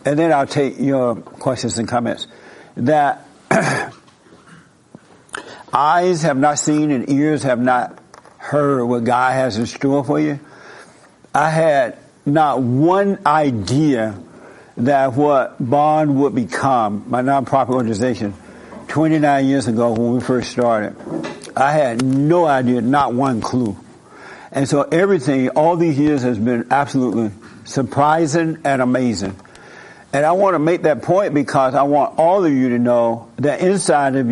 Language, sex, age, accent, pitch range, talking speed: English, male, 60-79, American, 125-150 Hz, 145 wpm